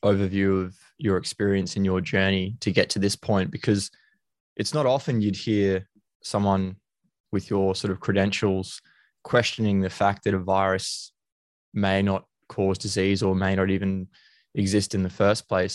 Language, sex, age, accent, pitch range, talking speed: English, male, 20-39, Australian, 95-115 Hz, 165 wpm